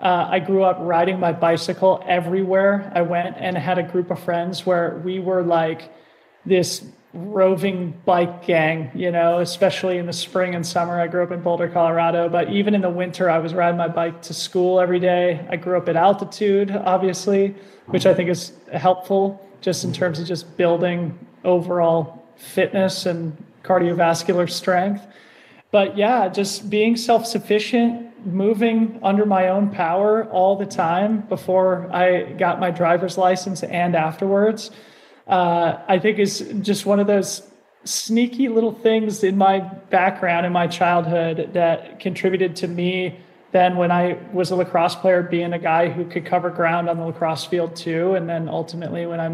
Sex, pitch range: male, 170-195 Hz